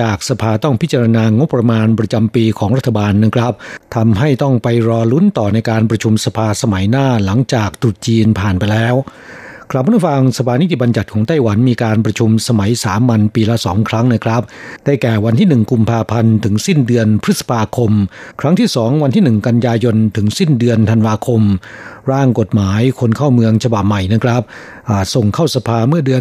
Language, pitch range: Thai, 110-130 Hz